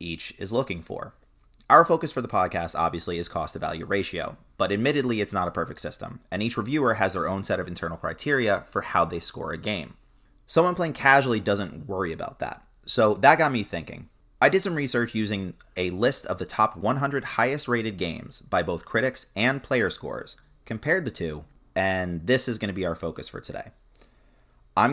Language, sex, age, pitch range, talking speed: English, male, 30-49, 90-120 Hz, 200 wpm